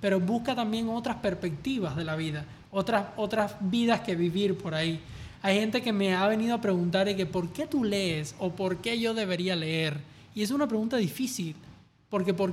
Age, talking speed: 20-39, 200 wpm